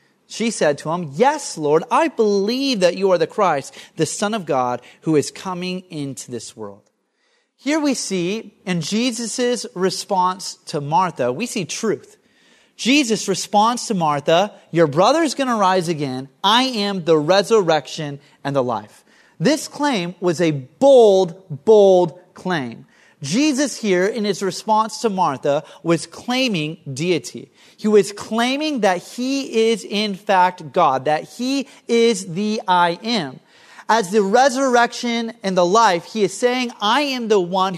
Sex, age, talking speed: male, 30-49, 155 wpm